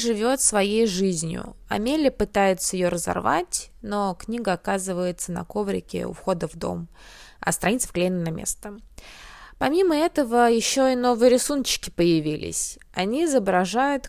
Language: Russian